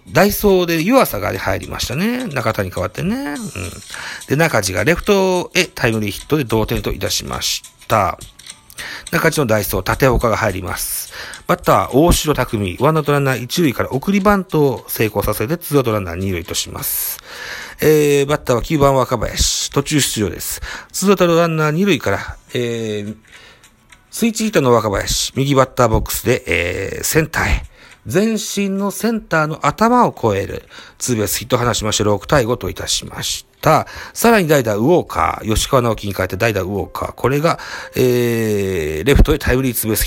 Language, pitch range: Japanese, 105-175 Hz